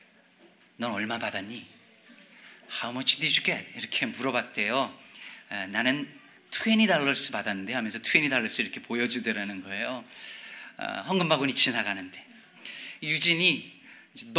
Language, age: Korean, 40-59